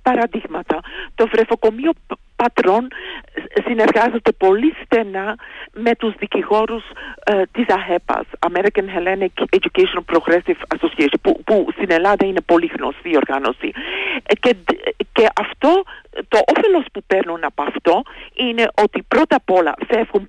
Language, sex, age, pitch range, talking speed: Greek, female, 50-69, 205-335 Hz, 125 wpm